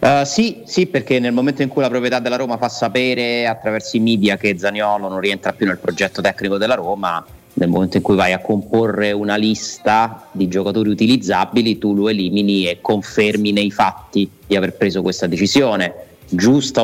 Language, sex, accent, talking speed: Italian, male, native, 185 wpm